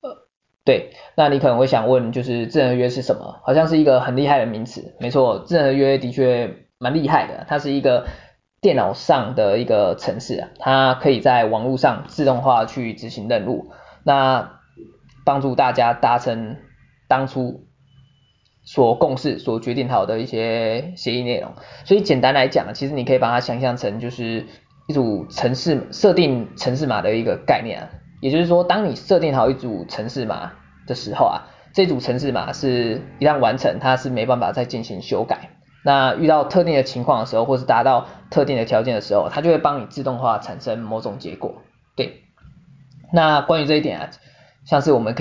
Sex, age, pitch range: male, 20-39, 120-145 Hz